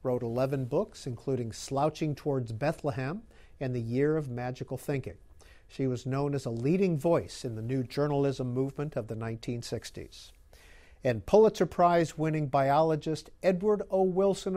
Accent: American